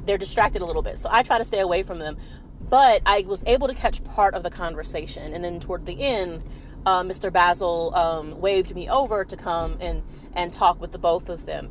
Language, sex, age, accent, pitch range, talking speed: English, female, 30-49, American, 175-215 Hz, 230 wpm